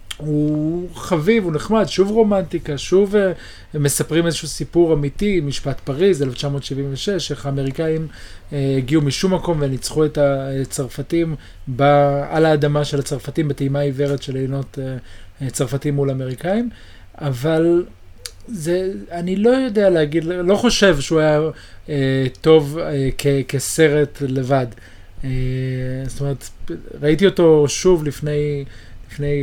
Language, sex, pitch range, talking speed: Hebrew, male, 130-160 Hz, 125 wpm